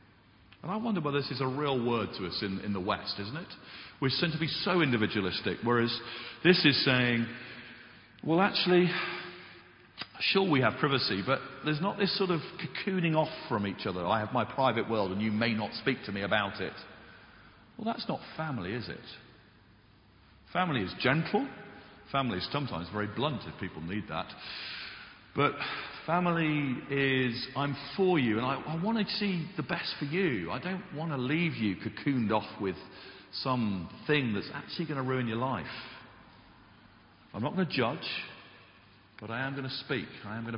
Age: 40-59